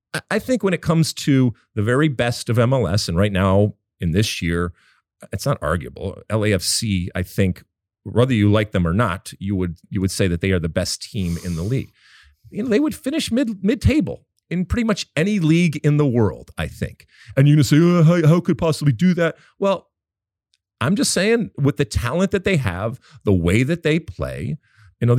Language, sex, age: English, male, 40-59